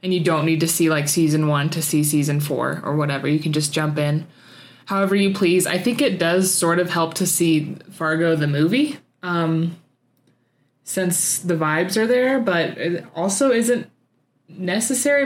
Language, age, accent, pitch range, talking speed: English, 20-39, American, 150-185 Hz, 180 wpm